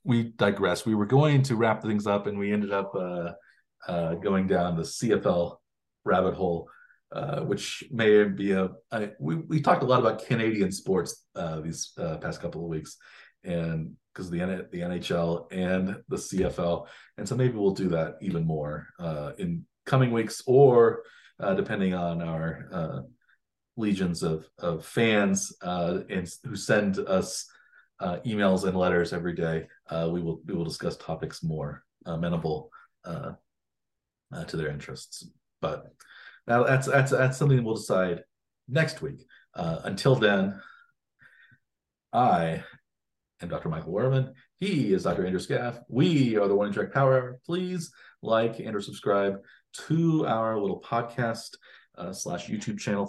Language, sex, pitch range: English, male, 85-120 Hz